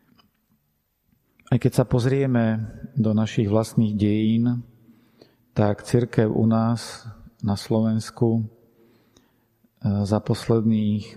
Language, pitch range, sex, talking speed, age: Slovak, 105-115 Hz, male, 85 wpm, 40-59